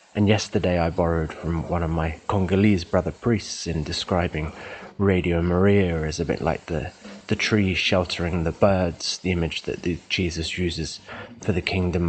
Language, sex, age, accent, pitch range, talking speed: English, male, 30-49, British, 85-105 Hz, 170 wpm